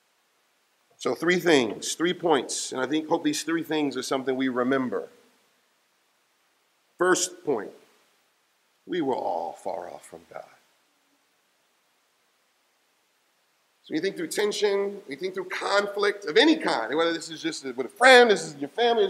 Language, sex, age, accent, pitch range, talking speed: English, male, 40-59, American, 155-245 Hz, 150 wpm